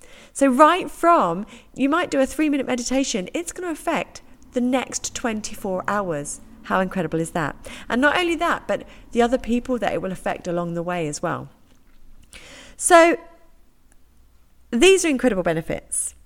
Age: 40-59